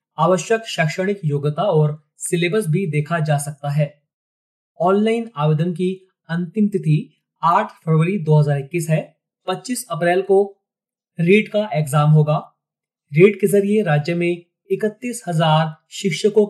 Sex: male